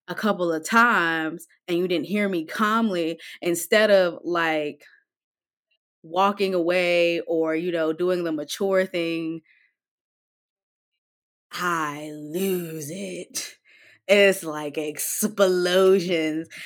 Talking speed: 100 wpm